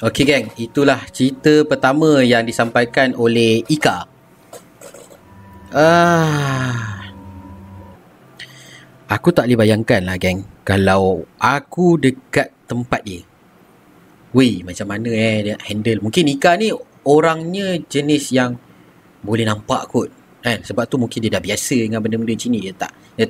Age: 30-49